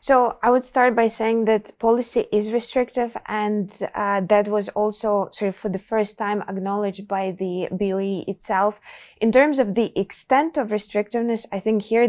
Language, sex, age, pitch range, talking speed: English, female, 20-39, 195-225 Hz, 180 wpm